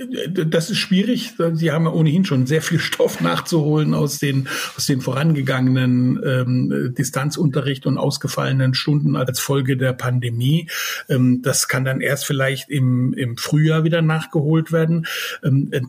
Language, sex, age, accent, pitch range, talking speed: German, male, 60-79, German, 135-170 Hz, 145 wpm